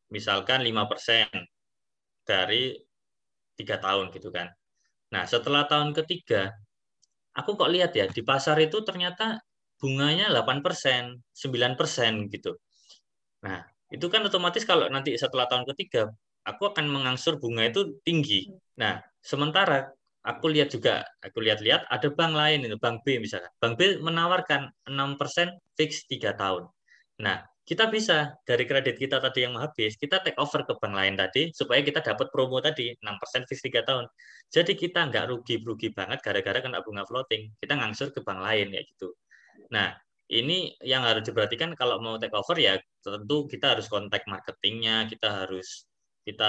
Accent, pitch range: native, 110-150 Hz